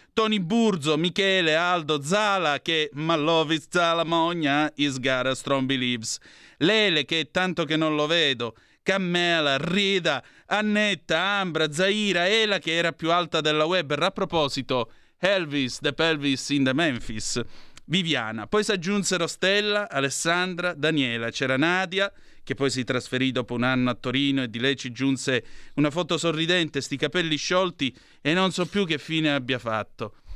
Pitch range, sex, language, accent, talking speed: 135-175 Hz, male, Italian, native, 150 wpm